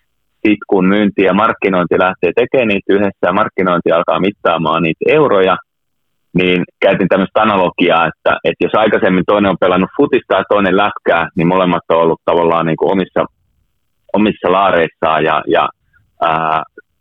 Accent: native